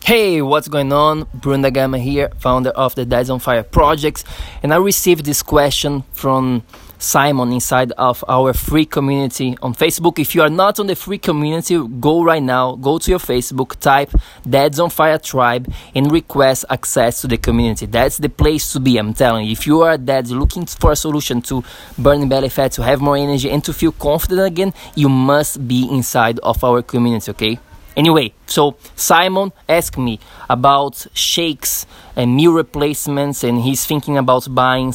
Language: English